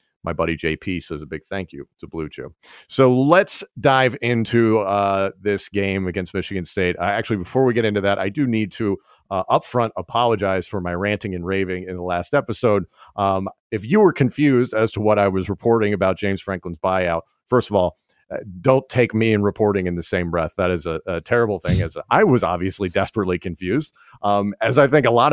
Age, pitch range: 40-59, 95-115 Hz